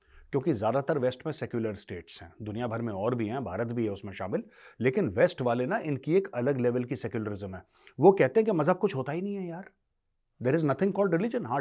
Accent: native